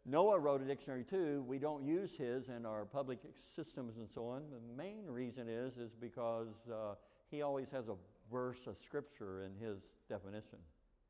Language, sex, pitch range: English, male, 85-130 Hz